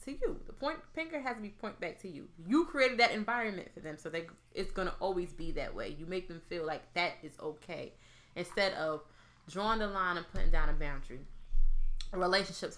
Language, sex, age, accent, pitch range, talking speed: English, female, 20-39, American, 145-190 Hz, 215 wpm